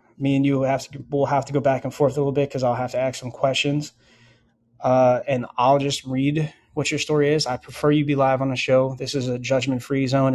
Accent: American